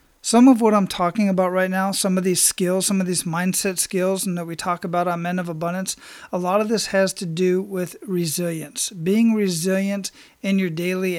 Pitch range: 175-195 Hz